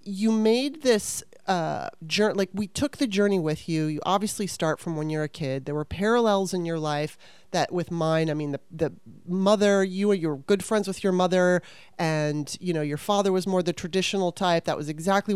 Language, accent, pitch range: English, American, 170-215 Hz